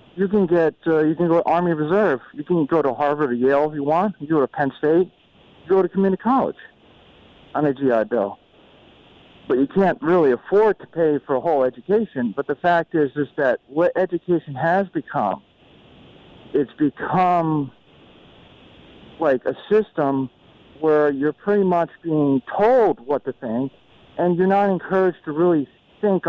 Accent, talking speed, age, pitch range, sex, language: American, 175 wpm, 50-69, 145-185 Hz, male, English